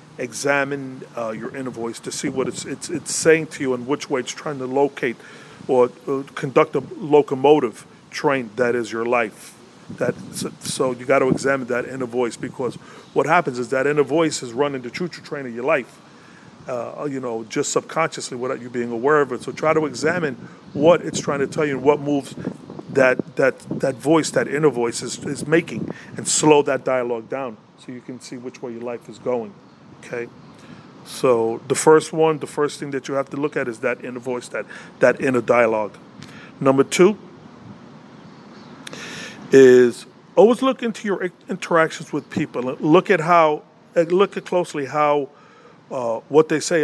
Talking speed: 190 wpm